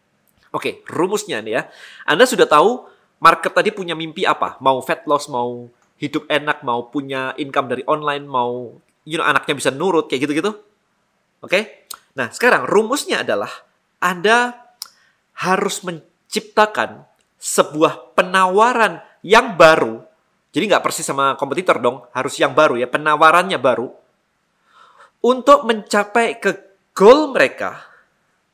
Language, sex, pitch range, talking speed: Indonesian, male, 140-190 Hz, 130 wpm